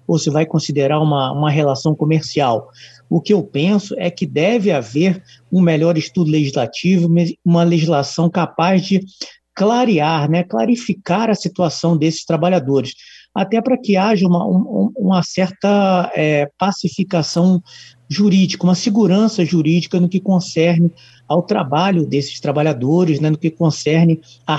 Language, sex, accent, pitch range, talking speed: Portuguese, male, Brazilian, 145-190 Hz, 135 wpm